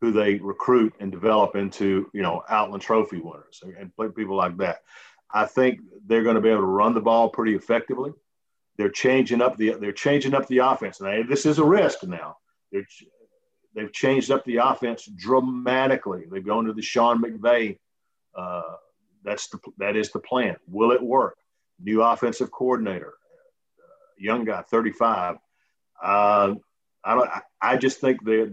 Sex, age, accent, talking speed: male, 50-69, American, 175 wpm